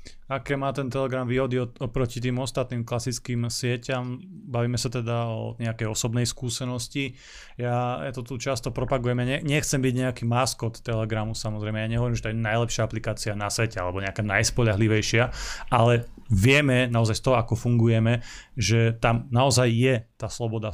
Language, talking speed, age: Slovak, 160 wpm, 30-49